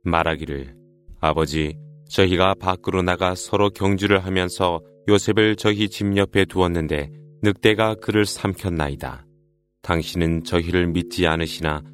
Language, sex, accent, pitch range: Korean, male, native, 85-105 Hz